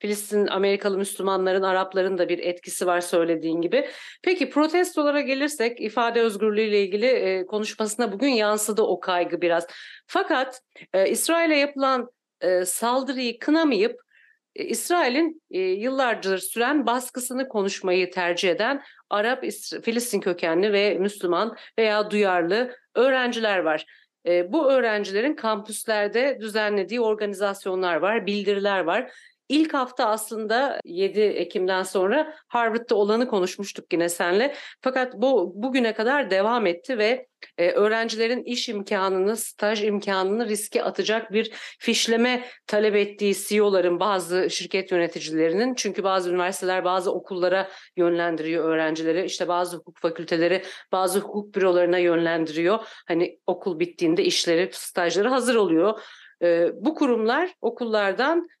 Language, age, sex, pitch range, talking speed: Turkish, 40-59, female, 185-250 Hz, 115 wpm